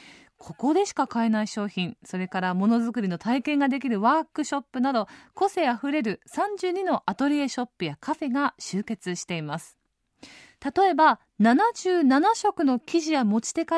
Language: Japanese